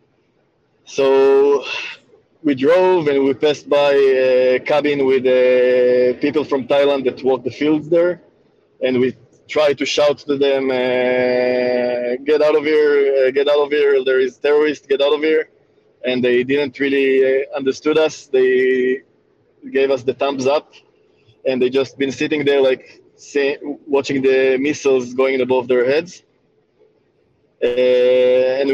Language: English